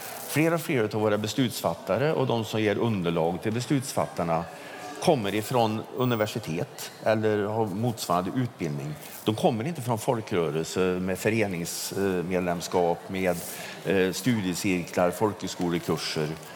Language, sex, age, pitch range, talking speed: Swedish, male, 50-69, 90-130 Hz, 110 wpm